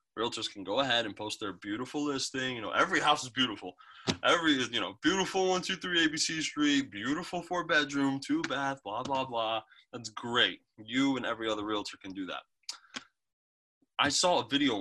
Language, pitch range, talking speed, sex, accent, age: English, 110-145 Hz, 185 wpm, male, American, 20-39